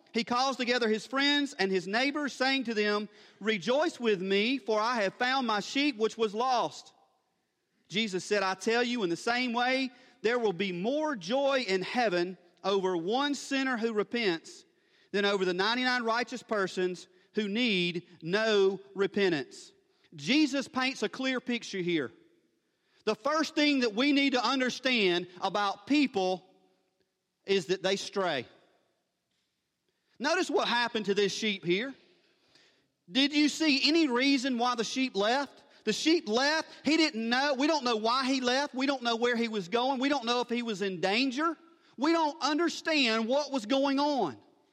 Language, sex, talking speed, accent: English, male, 165 wpm, American